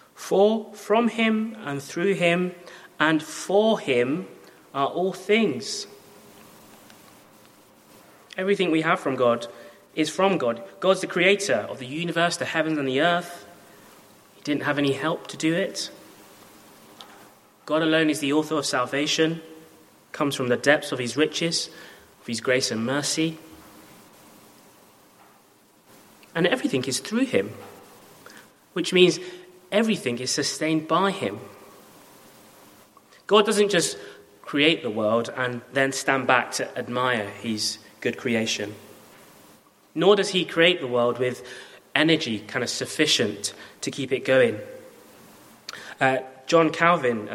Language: English